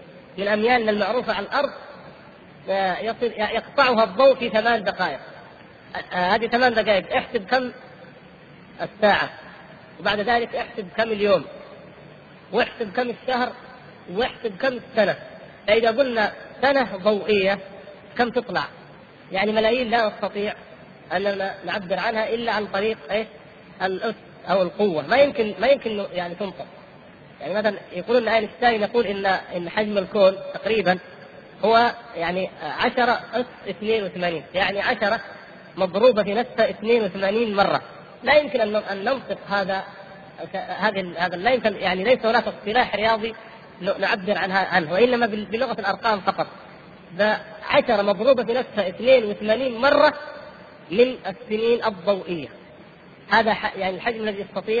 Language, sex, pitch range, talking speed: Arabic, female, 195-235 Hz, 120 wpm